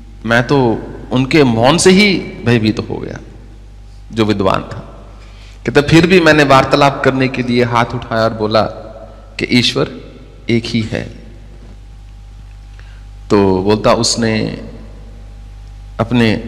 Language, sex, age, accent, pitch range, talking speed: English, male, 40-59, Indian, 110-140 Hz, 125 wpm